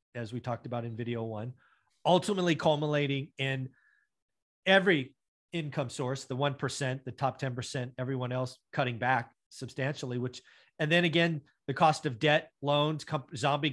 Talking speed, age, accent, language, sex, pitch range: 145 wpm, 40-59, American, English, male, 130-165 Hz